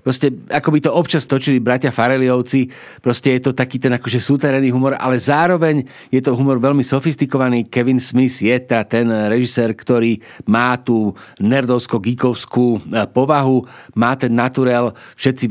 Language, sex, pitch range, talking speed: Slovak, male, 120-140 Hz, 145 wpm